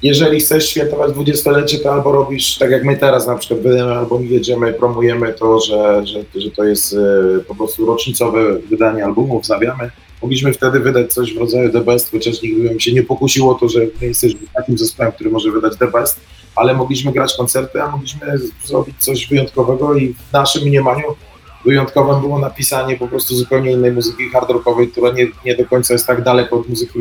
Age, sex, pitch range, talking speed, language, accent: 30-49, male, 120-145 Hz, 195 wpm, Polish, native